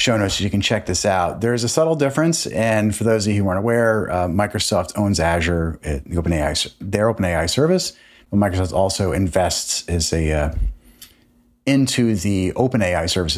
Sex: male